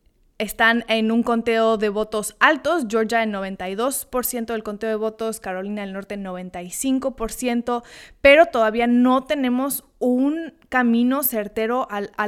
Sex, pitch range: female, 210-260 Hz